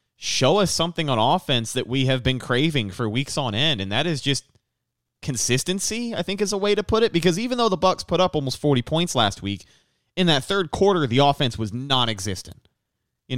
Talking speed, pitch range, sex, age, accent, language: 215 wpm, 110-145 Hz, male, 20-39, American, English